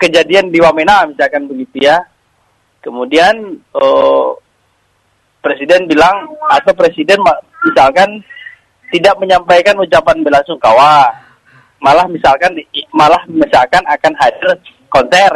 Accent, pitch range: native, 165-250 Hz